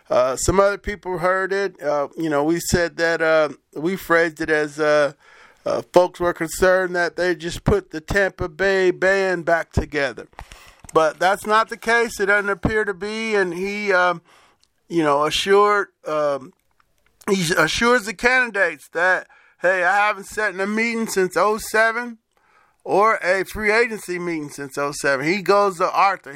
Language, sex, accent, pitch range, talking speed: English, male, American, 175-215 Hz, 170 wpm